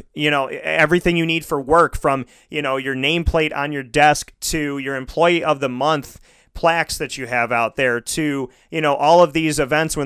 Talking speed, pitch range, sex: 210 wpm, 120-145 Hz, male